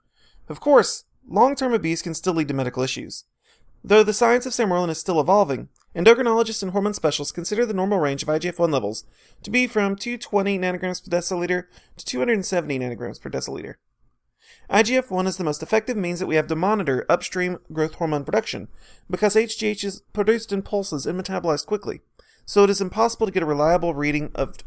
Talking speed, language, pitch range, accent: 180 wpm, English, 150-210 Hz, American